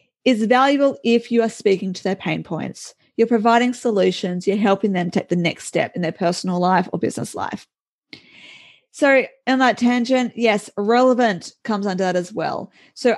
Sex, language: female, English